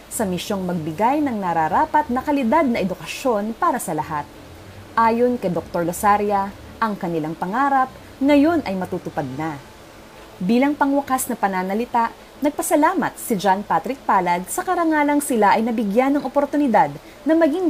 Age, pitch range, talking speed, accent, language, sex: 20-39, 185-290 Hz, 140 wpm, native, Filipino, female